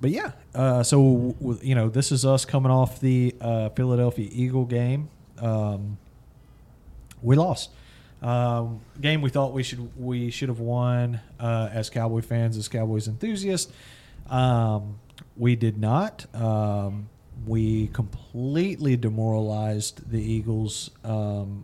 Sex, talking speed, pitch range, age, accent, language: male, 130 wpm, 110-135 Hz, 40-59, American, English